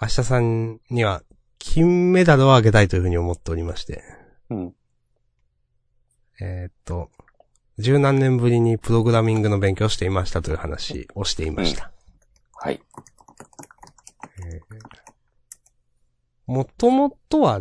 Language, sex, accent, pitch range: Japanese, male, native, 90-145 Hz